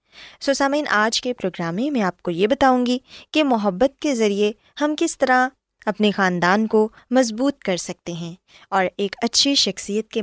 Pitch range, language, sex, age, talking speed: 185-255 Hz, Urdu, female, 20-39, 180 wpm